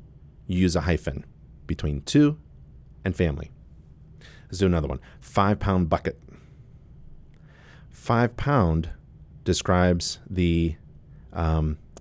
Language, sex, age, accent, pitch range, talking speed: English, male, 40-59, American, 75-90 Hz, 100 wpm